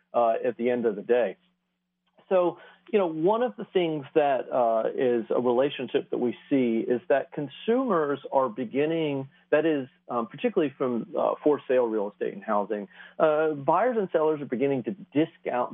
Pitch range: 120-175 Hz